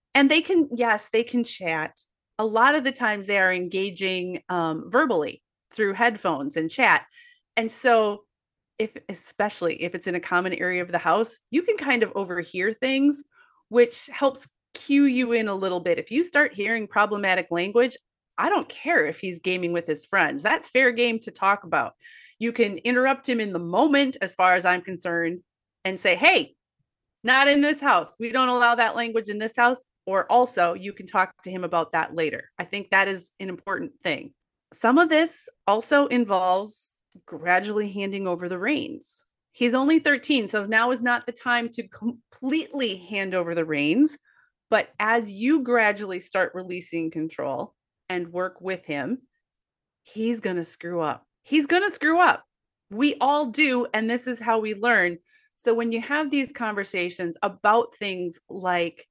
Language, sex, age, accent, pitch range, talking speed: English, female, 30-49, American, 185-255 Hz, 180 wpm